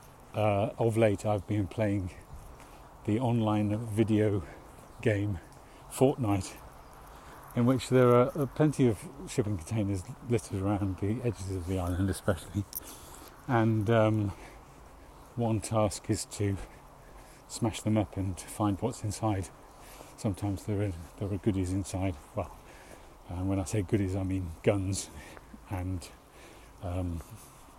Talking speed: 125 wpm